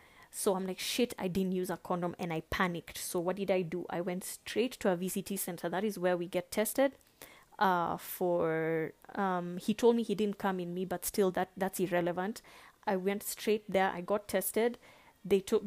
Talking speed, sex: 210 wpm, female